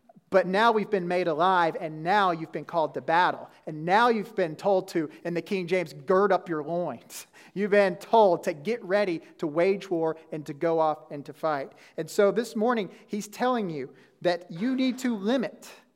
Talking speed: 205 wpm